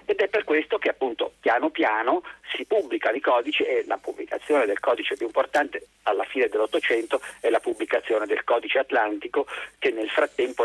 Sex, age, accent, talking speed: male, 50-69, native, 175 wpm